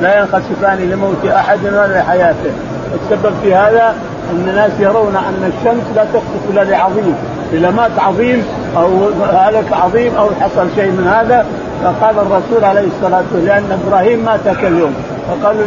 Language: Arabic